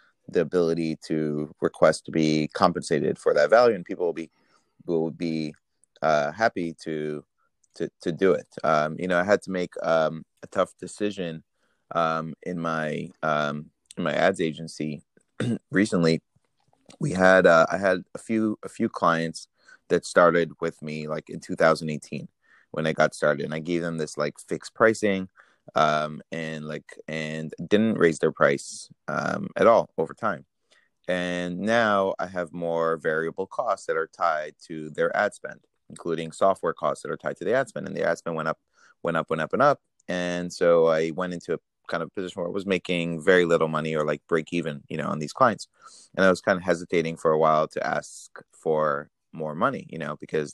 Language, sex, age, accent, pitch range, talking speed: English, male, 30-49, American, 75-90 Hz, 195 wpm